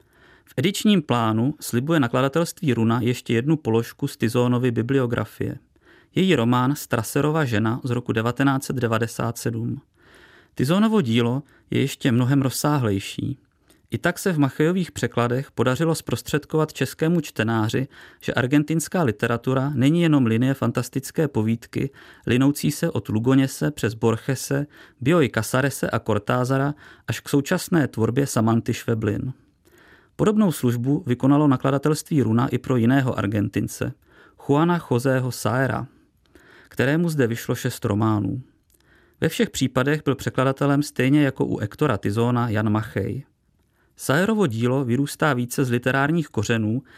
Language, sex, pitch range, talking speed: Czech, male, 115-145 Hz, 120 wpm